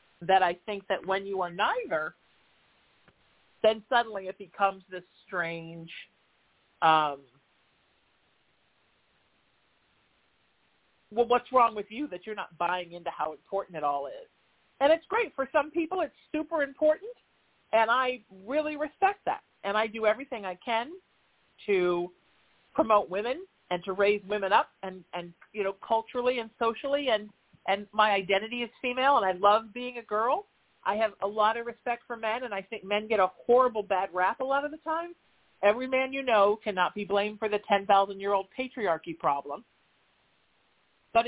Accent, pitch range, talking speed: American, 195-275 Hz, 165 wpm